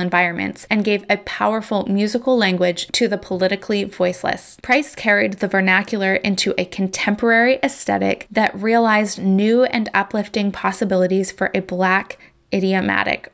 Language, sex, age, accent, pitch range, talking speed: English, female, 20-39, American, 190-225 Hz, 130 wpm